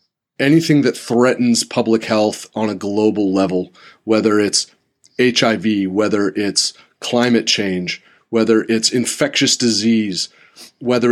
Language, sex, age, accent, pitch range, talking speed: English, male, 30-49, American, 110-135 Hz, 115 wpm